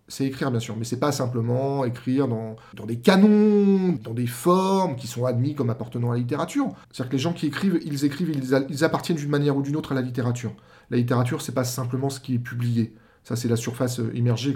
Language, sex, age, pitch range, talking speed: French, male, 40-59, 115-145 Hz, 245 wpm